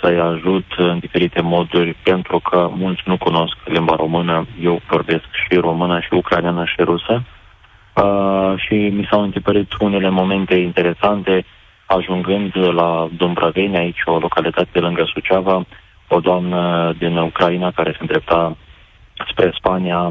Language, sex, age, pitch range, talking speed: Romanian, male, 30-49, 85-95 Hz, 135 wpm